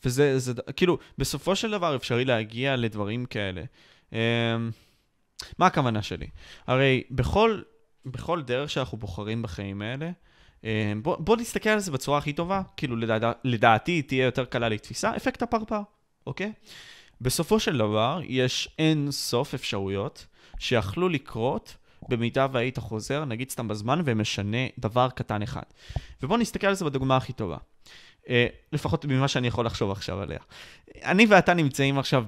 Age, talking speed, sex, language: 20-39, 145 wpm, male, Hebrew